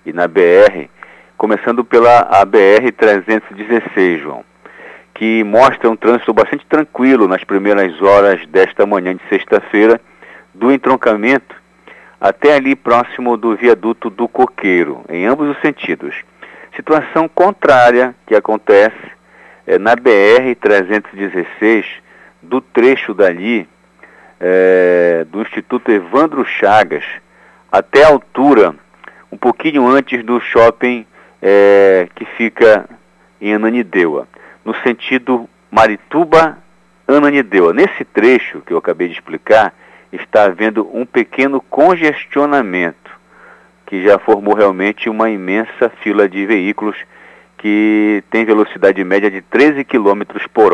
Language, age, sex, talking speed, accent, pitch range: Portuguese, 50-69, male, 105 wpm, Brazilian, 100-135 Hz